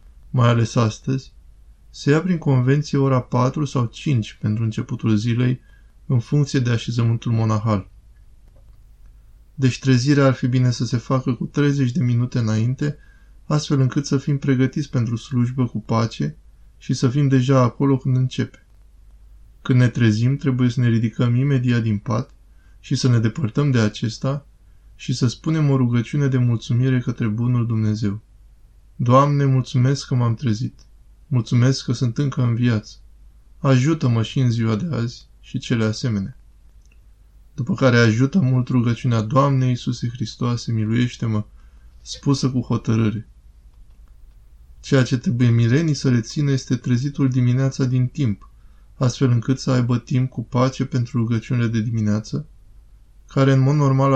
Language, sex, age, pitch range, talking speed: Romanian, male, 20-39, 110-135 Hz, 145 wpm